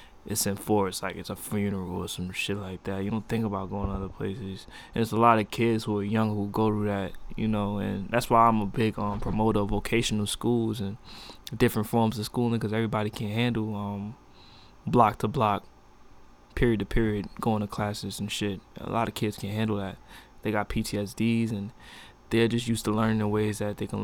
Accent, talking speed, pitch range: American, 215 wpm, 100-115 Hz